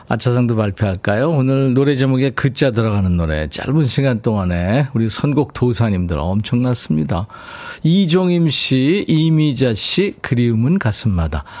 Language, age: Korean, 40-59